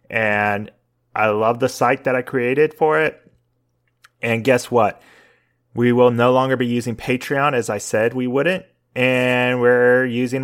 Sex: male